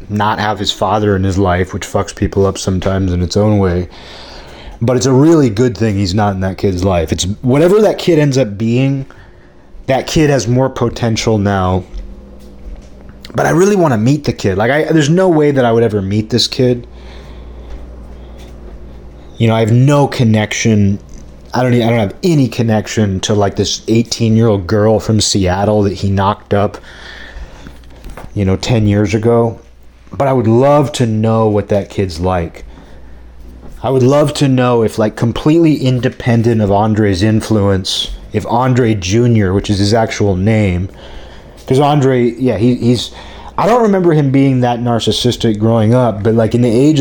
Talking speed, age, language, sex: 175 wpm, 30-49, English, male